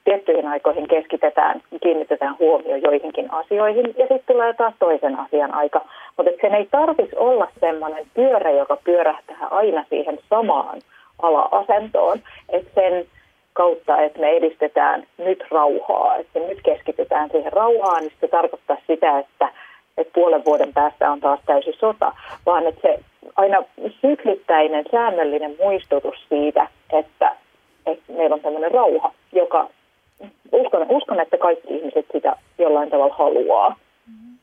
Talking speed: 130 wpm